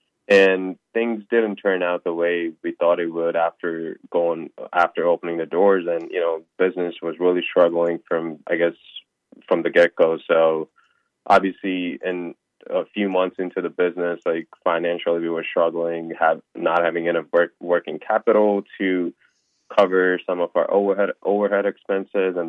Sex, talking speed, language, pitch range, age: male, 155 wpm, English, 85-95 Hz, 20-39